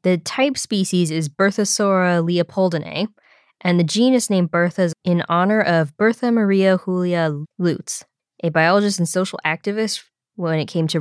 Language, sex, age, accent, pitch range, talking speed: English, female, 20-39, American, 155-195 Hz, 155 wpm